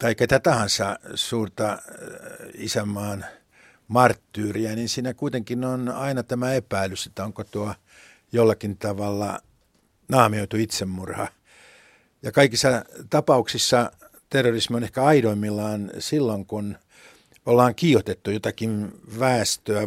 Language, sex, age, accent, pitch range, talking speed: Finnish, male, 60-79, native, 105-130 Hz, 100 wpm